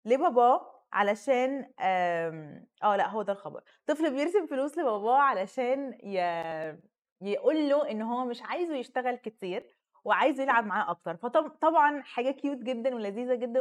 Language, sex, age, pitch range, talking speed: Arabic, female, 20-39, 220-270 Hz, 140 wpm